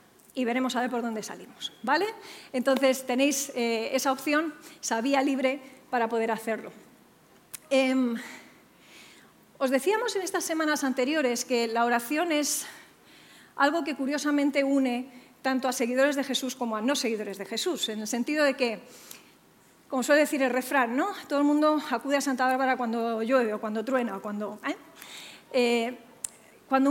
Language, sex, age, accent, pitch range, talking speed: English, female, 40-59, Spanish, 245-290 Hz, 160 wpm